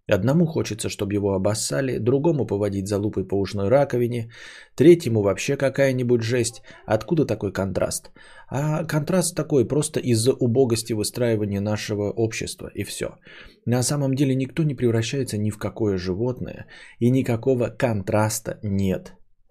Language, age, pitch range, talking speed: Bulgarian, 20-39, 105-130 Hz, 135 wpm